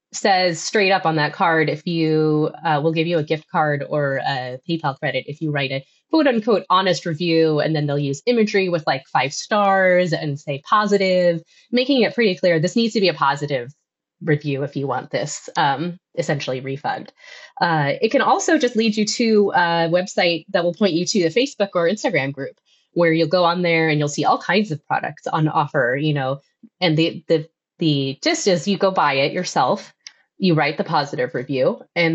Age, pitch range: 20-39, 155-210 Hz